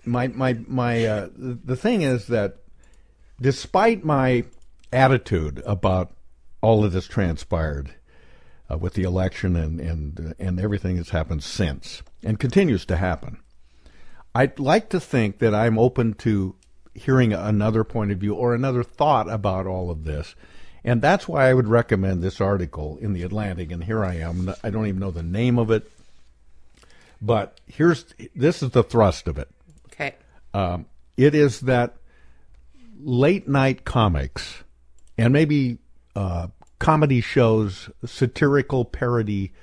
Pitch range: 90-125 Hz